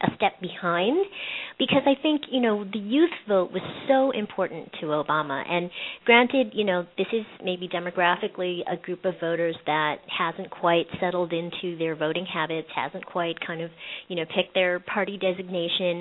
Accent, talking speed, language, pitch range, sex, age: American, 170 wpm, English, 170-215 Hz, female, 40-59